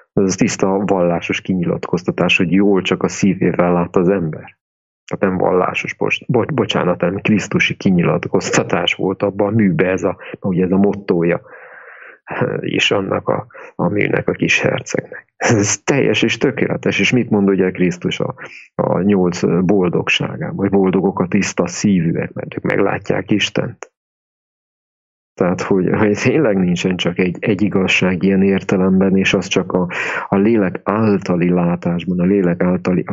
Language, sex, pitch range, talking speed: English, male, 90-100 Hz, 140 wpm